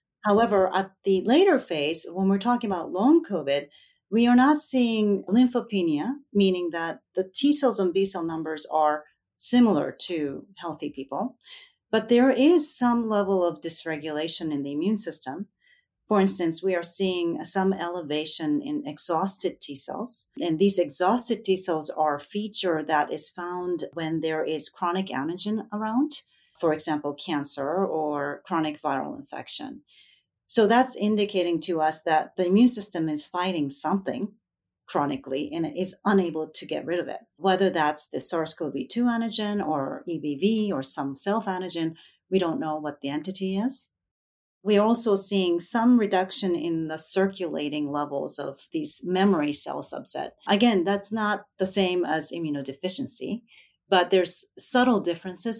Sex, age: female, 40-59